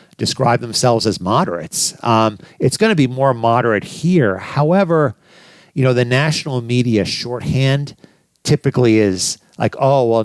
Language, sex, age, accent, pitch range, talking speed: English, male, 50-69, American, 105-140 Hz, 135 wpm